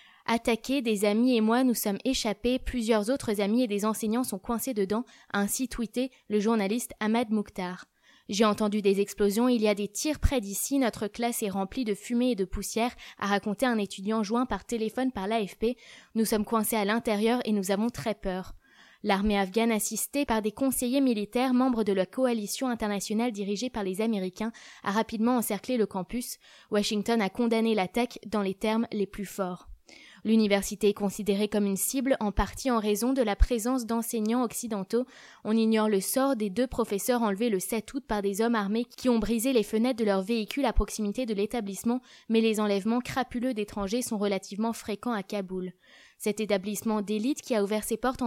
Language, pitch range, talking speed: French, 205-245 Hz, 200 wpm